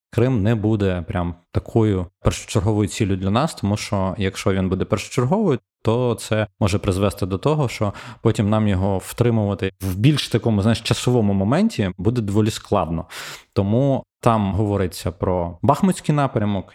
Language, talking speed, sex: Ukrainian, 145 wpm, male